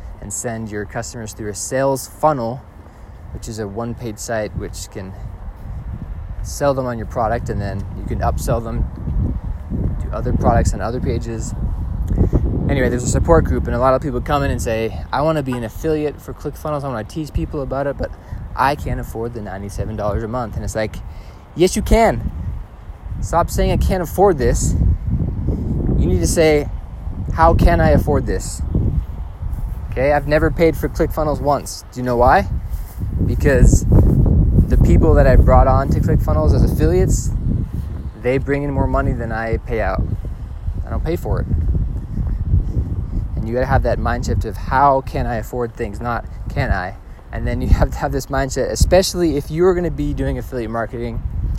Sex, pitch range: male, 95-130 Hz